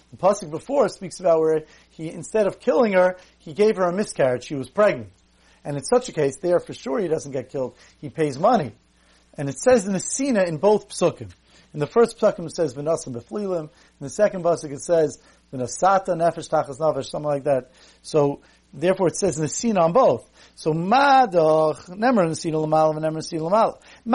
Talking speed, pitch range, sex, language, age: 175 wpm, 145-190 Hz, male, English, 40-59